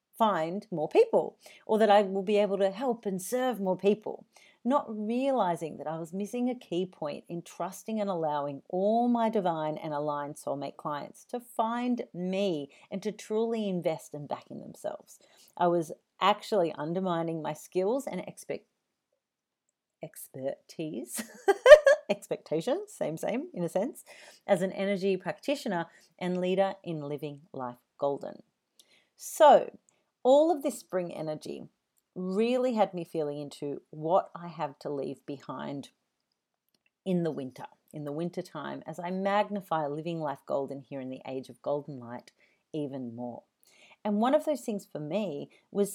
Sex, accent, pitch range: female, Australian, 155-210 Hz